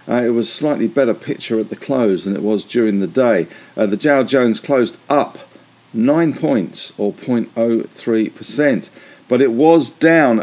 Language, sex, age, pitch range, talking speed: English, male, 50-69, 110-140 Hz, 175 wpm